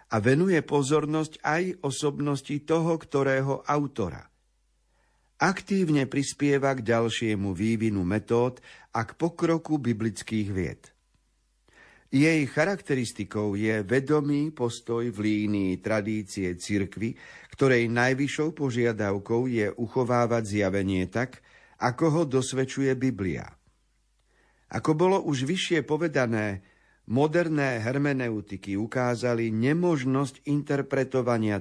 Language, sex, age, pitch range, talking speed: Slovak, male, 50-69, 105-140 Hz, 95 wpm